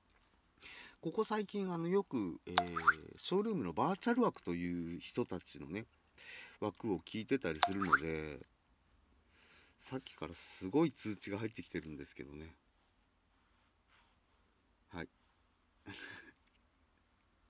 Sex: male